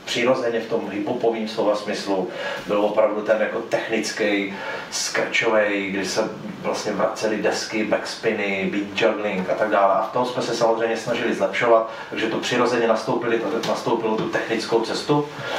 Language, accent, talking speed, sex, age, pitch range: Czech, native, 145 wpm, male, 30-49, 100-115 Hz